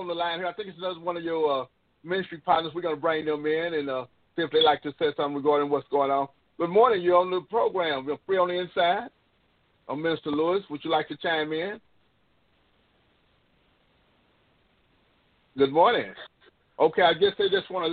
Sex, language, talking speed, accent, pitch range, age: male, English, 210 wpm, American, 140-180 Hz, 50-69